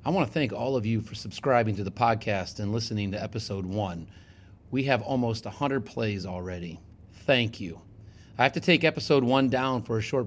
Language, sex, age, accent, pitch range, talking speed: English, male, 30-49, American, 105-135 Hz, 205 wpm